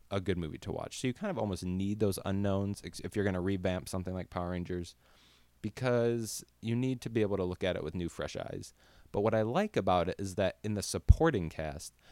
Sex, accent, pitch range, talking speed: male, American, 85-110 Hz, 245 wpm